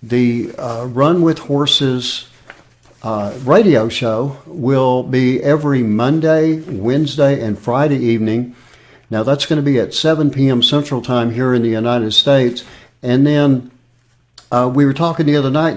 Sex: male